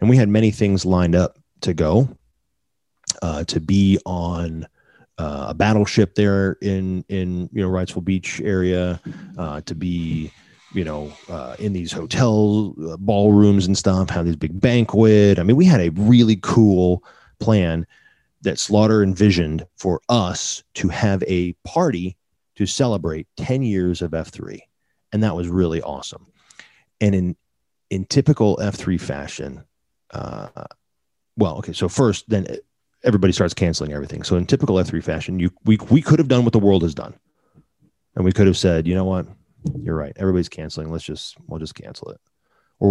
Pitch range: 85-105 Hz